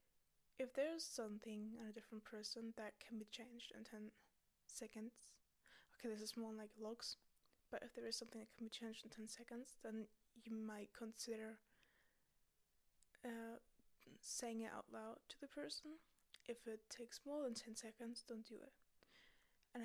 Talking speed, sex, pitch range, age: 170 wpm, female, 225-245 Hz, 10-29